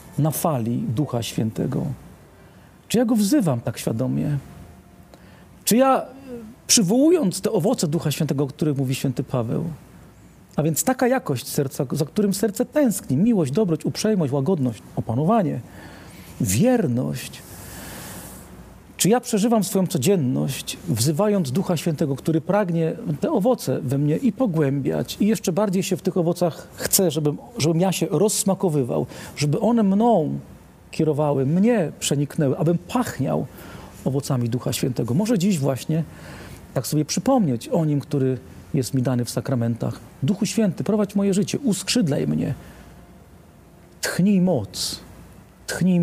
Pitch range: 140-205 Hz